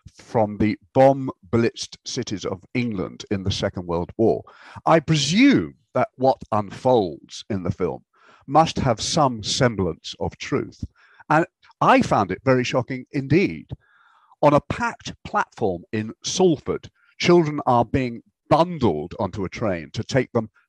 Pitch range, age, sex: 105-145 Hz, 50-69, male